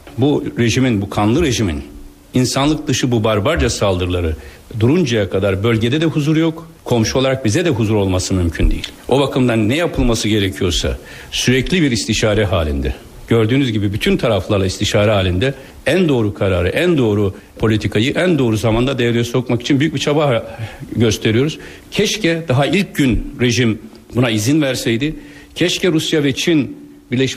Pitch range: 100-135 Hz